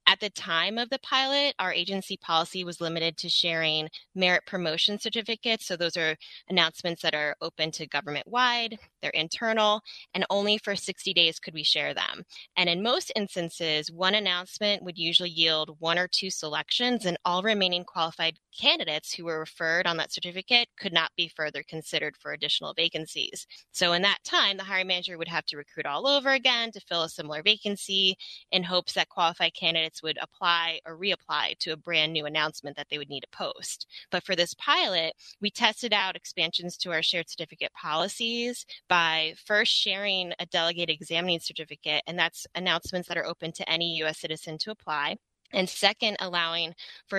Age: 10-29